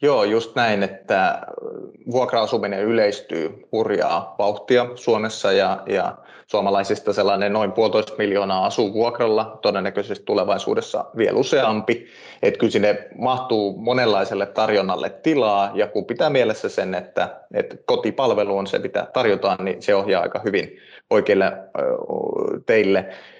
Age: 20-39